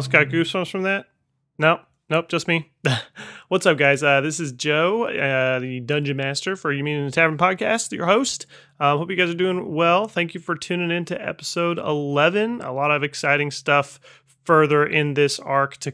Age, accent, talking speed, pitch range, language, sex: 30-49, American, 190 wpm, 135-170 Hz, English, male